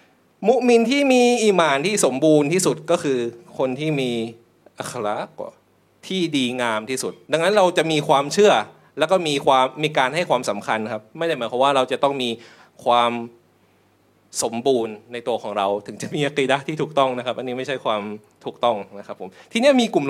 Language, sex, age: Thai, male, 20-39